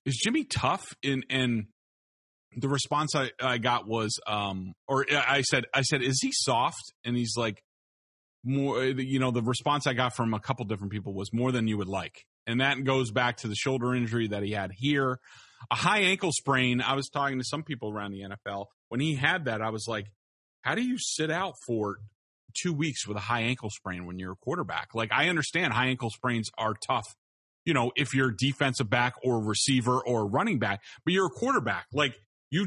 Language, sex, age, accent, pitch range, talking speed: English, male, 30-49, American, 115-155 Hz, 210 wpm